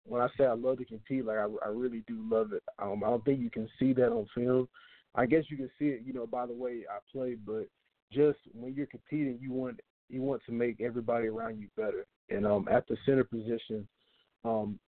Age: 20-39